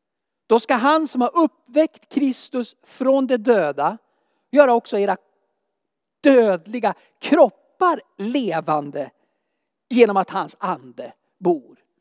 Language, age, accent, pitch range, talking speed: Swedish, 50-69, native, 215-265 Hz, 105 wpm